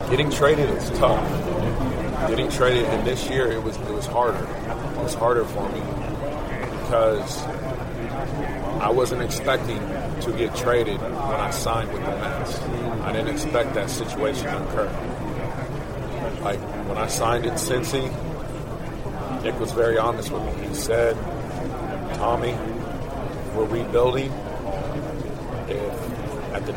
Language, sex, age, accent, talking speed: English, male, 30-49, American, 130 wpm